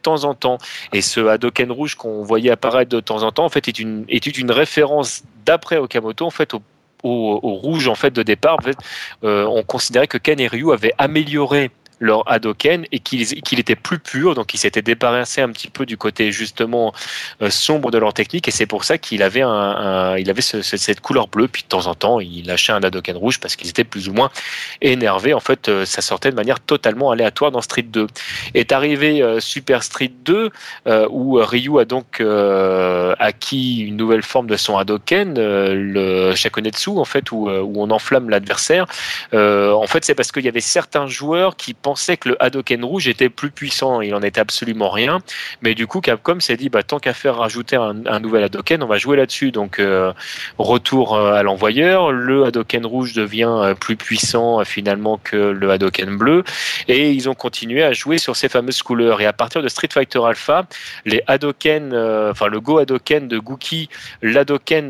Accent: French